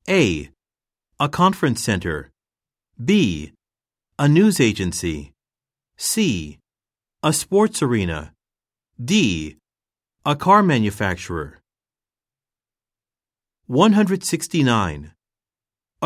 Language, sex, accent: Japanese, male, American